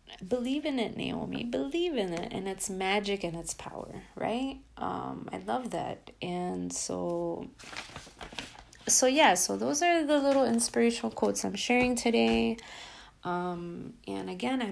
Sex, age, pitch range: female, 30-49, 160-230 Hz